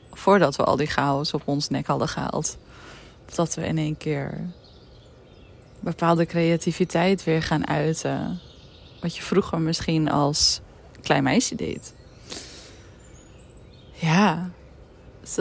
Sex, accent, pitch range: female, Dutch, 150-190 Hz